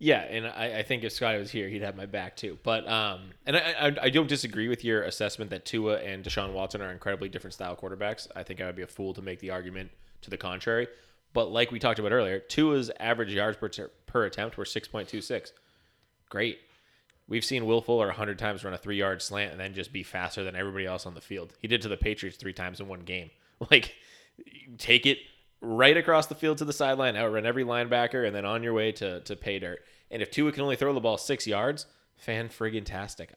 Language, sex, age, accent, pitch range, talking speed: English, male, 20-39, American, 95-120 Hz, 235 wpm